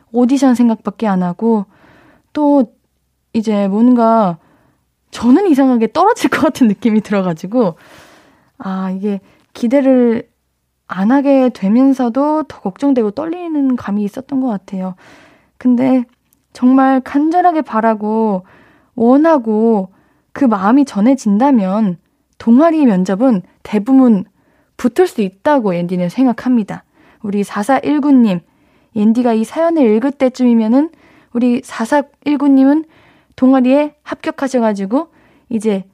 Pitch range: 210-285 Hz